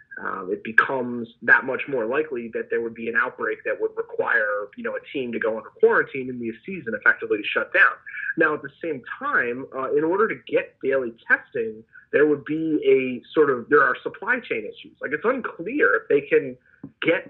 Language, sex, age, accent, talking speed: English, male, 30-49, American, 210 wpm